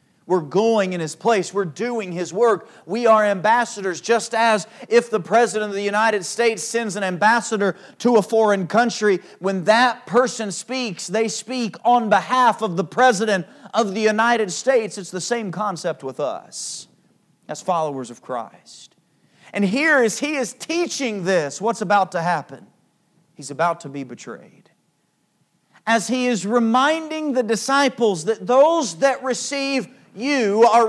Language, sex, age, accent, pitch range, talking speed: English, male, 40-59, American, 185-235 Hz, 155 wpm